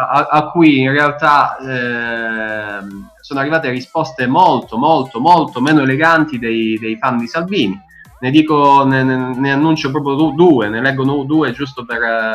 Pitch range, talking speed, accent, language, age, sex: 115-150 Hz, 150 wpm, native, Italian, 20-39, male